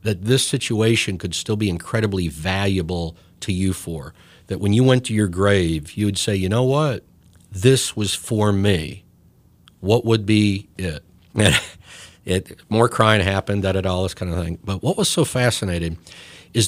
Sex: male